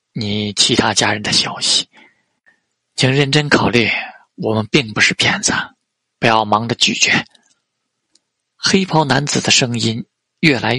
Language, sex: Chinese, male